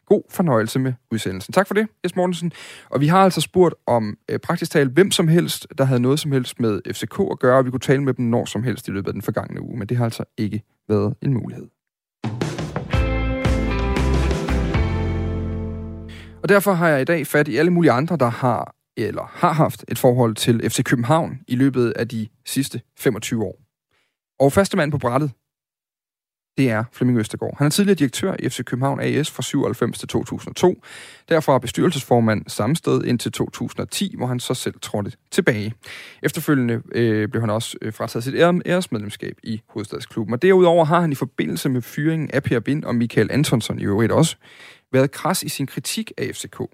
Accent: native